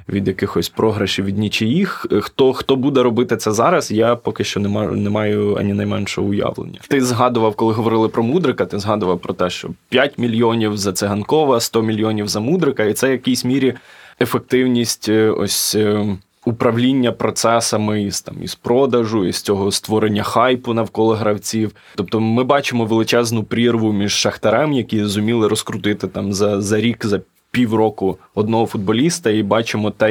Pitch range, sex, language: 100-115 Hz, male, Ukrainian